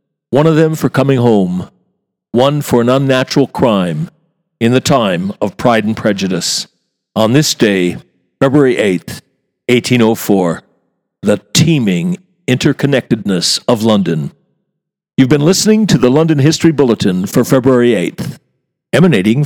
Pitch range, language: 115-170 Hz, English